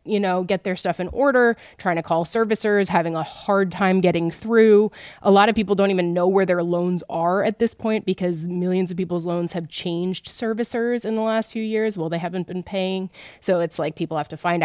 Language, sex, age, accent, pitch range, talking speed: English, female, 20-39, American, 175-220 Hz, 230 wpm